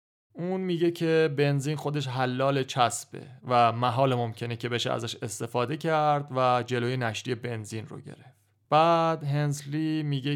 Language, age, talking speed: English, 30-49, 140 wpm